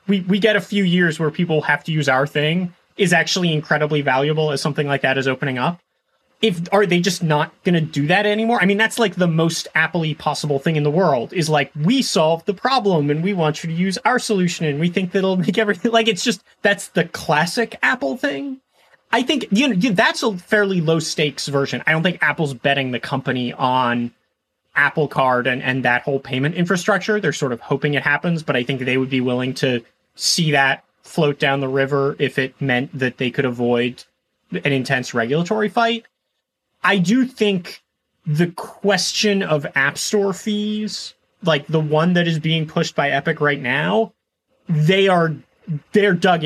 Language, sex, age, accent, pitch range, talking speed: English, male, 30-49, American, 140-190 Hz, 200 wpm